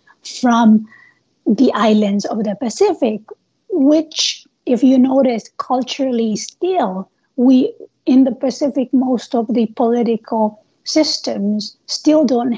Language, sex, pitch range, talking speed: English, female, 220-260 Hz, 110 wpm